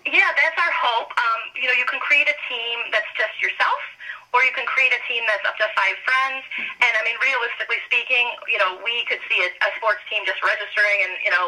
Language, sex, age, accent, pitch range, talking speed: English, female, 30-49, American, 210-285 Hz, 235 wpm